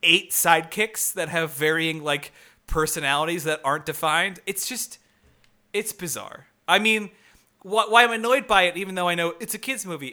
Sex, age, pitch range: male, 30-49, 145-180 Hz